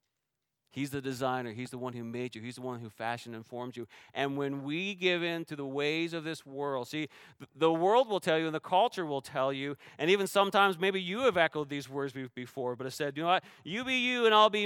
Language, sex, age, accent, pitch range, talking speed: English, male, 40-59, American, 130-180 Hz, 255 wpm